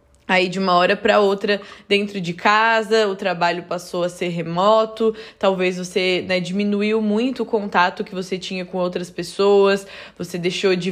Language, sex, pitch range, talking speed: Portuguese, female, 185-220 Hz, 170 wpm